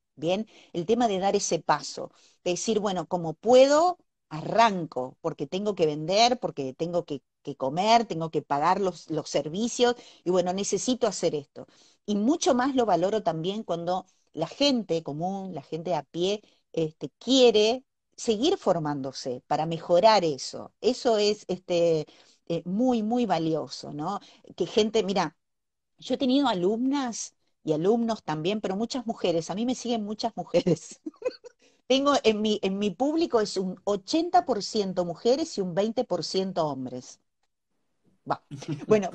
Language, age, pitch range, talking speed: Spanish, 40-59, 170-235 Hz, 140 wpm